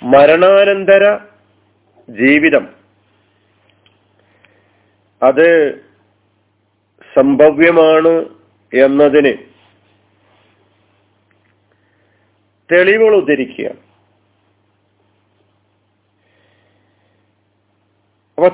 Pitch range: 100-140 Hz